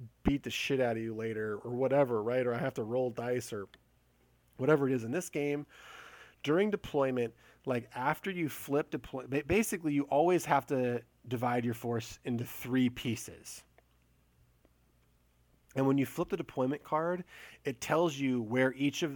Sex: male